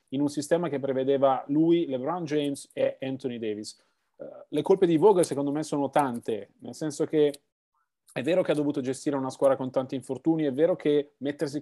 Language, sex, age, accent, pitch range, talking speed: Italian, male, 30-49, native, 135-160 Hz, 190 wpm